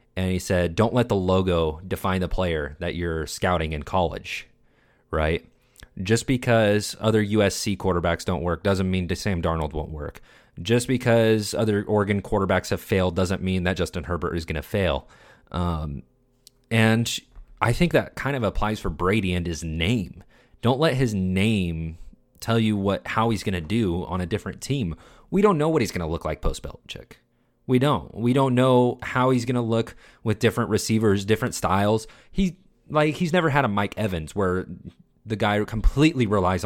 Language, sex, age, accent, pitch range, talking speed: English, male, 30-49, American, 90-115 Hz, 185 wpm